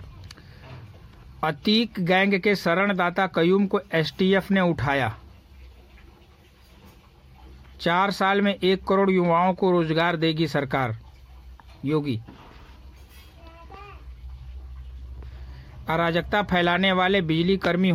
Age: 60-79